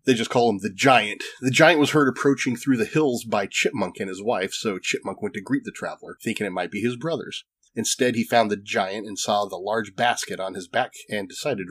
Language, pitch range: English, 110-140 Hz